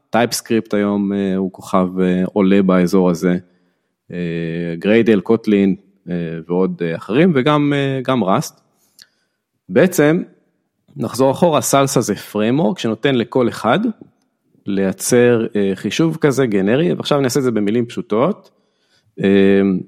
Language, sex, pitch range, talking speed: Hebrew, male, 100-140 Hz, 125 wpm